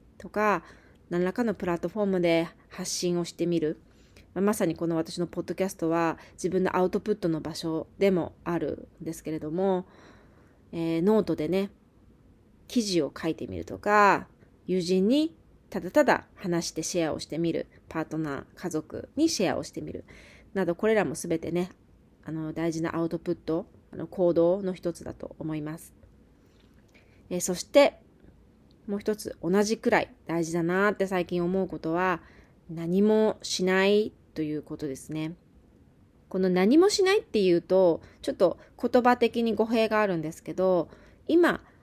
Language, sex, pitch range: Japanese, female, 160-215 Hz